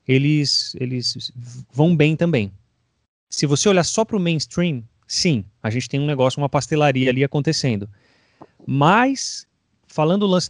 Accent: Brazilian